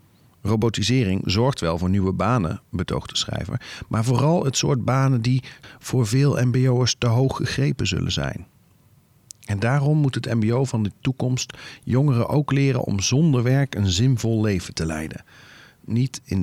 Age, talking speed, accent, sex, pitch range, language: 40-59, 155 wpm, Dutch, male, 105-135 Hz, Dutch